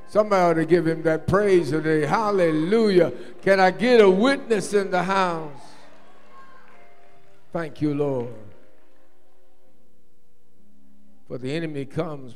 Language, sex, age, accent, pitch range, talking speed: English, male, 60-79, American, 130-200 Hz, 115 wpm